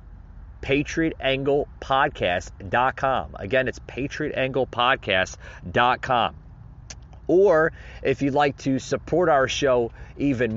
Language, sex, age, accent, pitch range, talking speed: English, male, 40-59, American, 105-140 Hz, 75 wpm